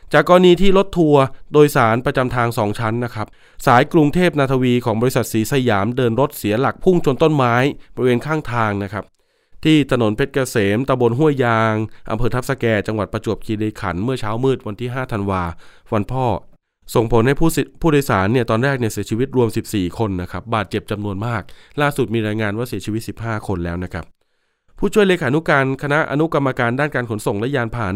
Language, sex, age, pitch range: Thai, male, 20-39, 110-150 Hz